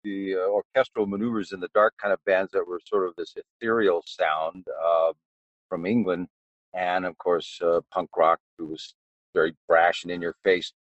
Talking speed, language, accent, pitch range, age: 185 wpm, English, American, 90-120 Hz, 50-69